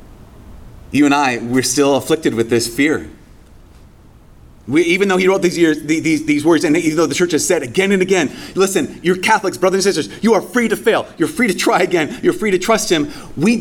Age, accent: 30-49, American